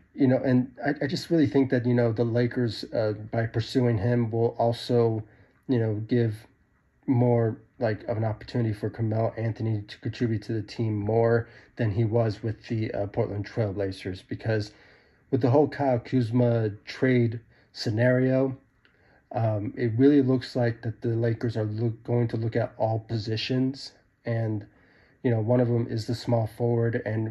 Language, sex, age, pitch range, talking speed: English, male, 30-49, 110-125 Hz, 175 wpm